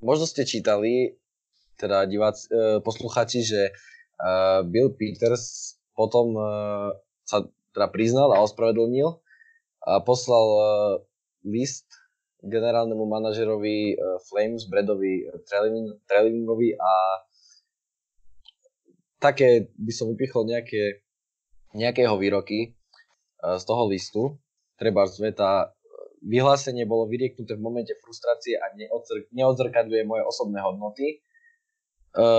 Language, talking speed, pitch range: Slovak, 105 wpm, 105-135 Hz